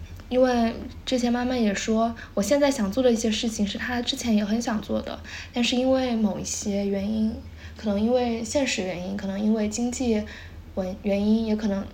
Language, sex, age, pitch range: Chinese, female, 10-29, 205-245 Hz